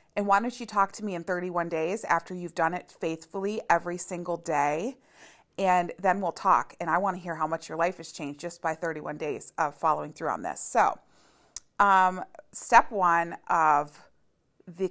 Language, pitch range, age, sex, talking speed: English, 170-200 Hz, 30-49, female, 195 wpm